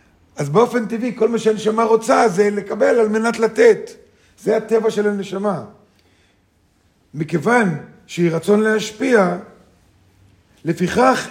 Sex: male